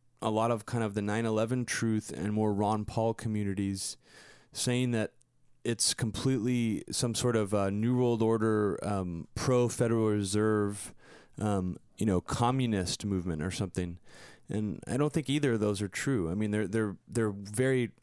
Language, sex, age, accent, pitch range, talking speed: English, male, 20-39, American, 100-120 Hz, 165 wpm